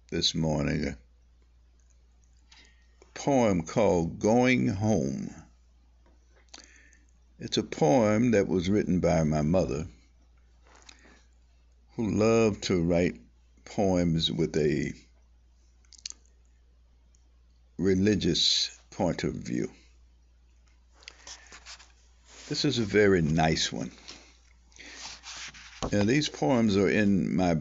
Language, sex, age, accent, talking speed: English, male, 60-79, American, 85 wpm